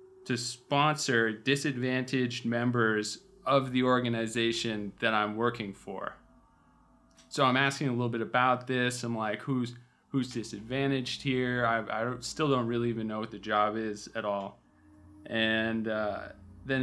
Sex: male